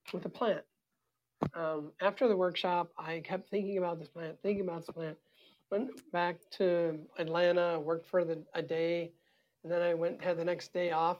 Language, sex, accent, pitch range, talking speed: English, male, American, 155-175 Hz, 190 wpm